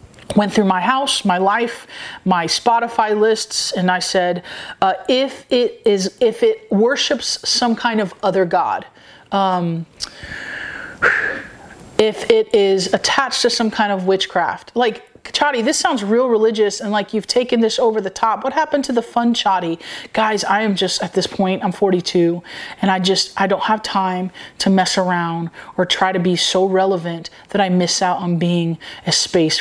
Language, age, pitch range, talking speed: English, 30-49, 175-210 Hz, 175 wpm